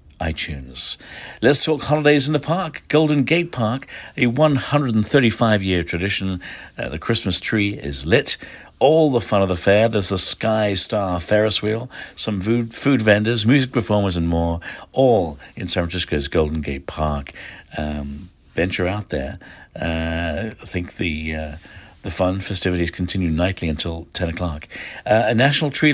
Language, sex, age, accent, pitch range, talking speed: English, male, 60-79, British, 85-115 Hz, 155 wpm